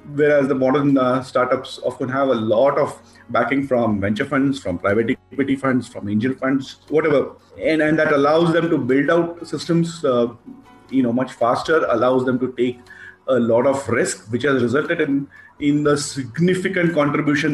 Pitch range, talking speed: 130-170 Hz, 180 wpm